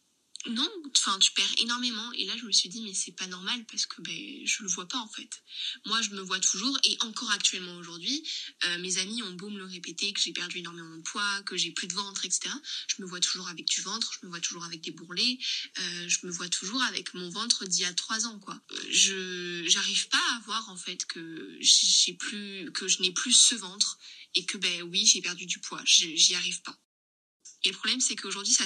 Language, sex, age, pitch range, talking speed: French, female, 20-39, 180-240 Hz, 245 wpm